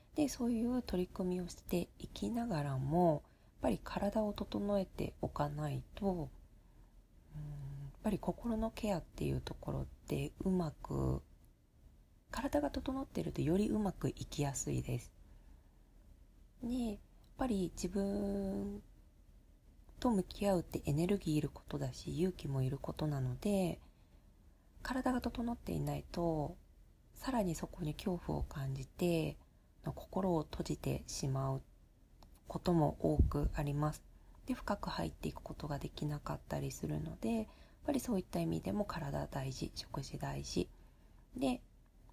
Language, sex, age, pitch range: Japanese, female, 40-59, 135-195 Hz